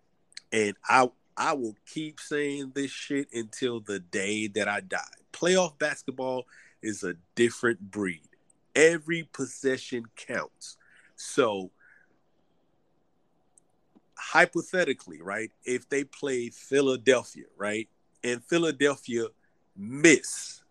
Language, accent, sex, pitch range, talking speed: English, American, male, 115-140 Hz, 100 wpm